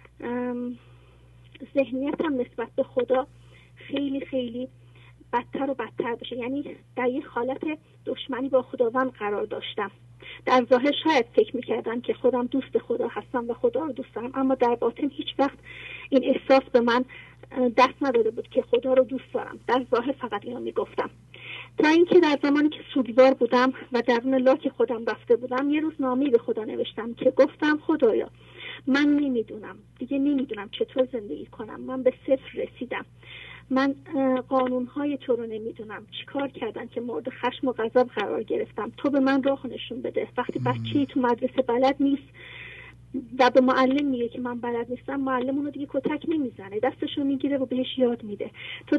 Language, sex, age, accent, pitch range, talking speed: English, female, 30-49, Canadian, 245-285 Hz, 170 wpm